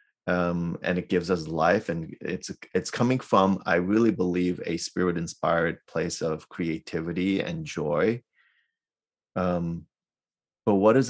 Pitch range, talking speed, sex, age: 80-100 Hz, 140 wpm, male, 30-49